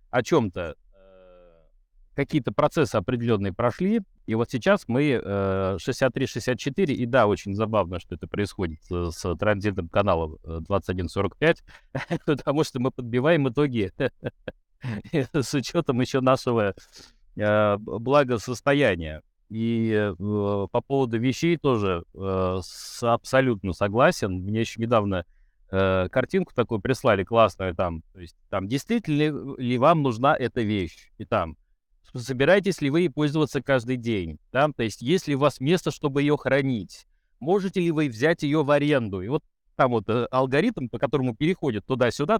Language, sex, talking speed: Russian, male, 130 wpm